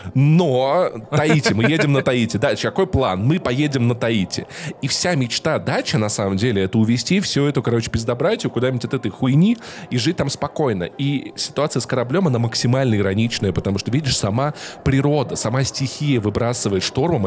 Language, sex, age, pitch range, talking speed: Russian, male, 20-39, 110-140 Hz, 175 wpm